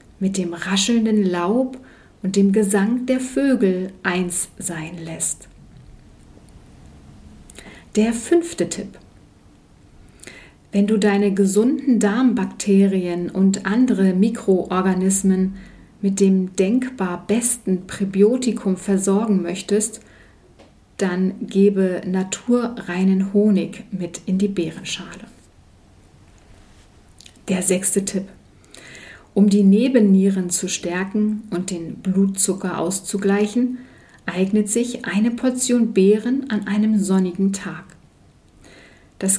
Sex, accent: female, German